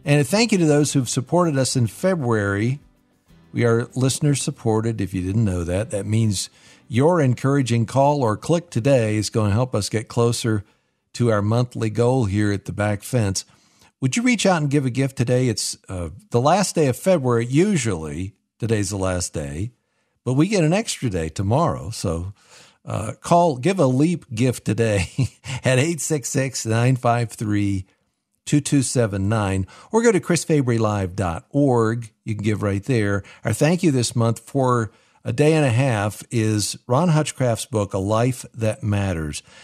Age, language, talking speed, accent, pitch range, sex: 50-69, English, 170 wpm, American, 105-135 Hz, male